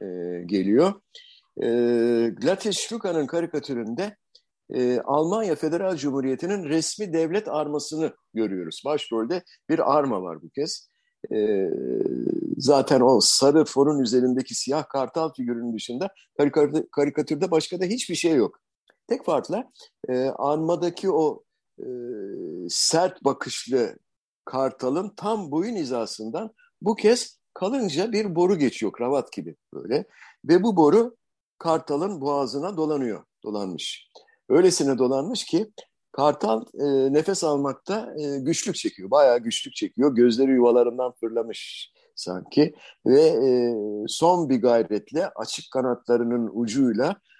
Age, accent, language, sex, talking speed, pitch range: 50-69, native, Turkish, male, 115 wpm, 130-210 Hz